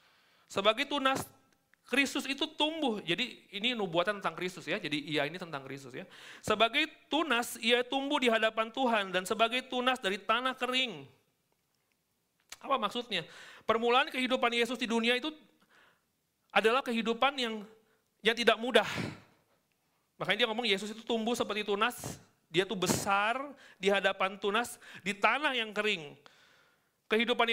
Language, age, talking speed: Indonesian, 40-59, 140 wpm